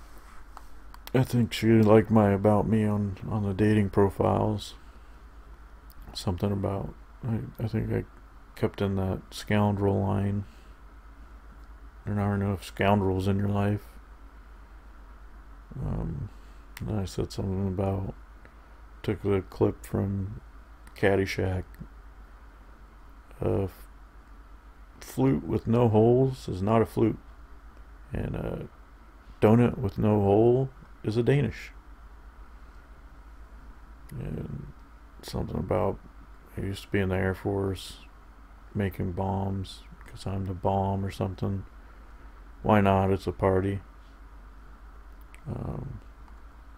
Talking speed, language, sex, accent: 110 wpm, English, male, American